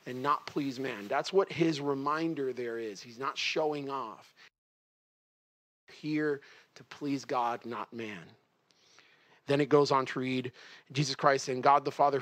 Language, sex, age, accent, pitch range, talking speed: English, male, 40-59, American, 145-200 Hz, 155 wpm